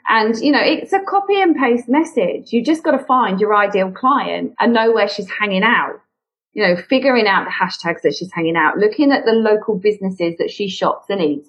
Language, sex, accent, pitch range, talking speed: English, female, British, 190-260 Hz, 225 wpm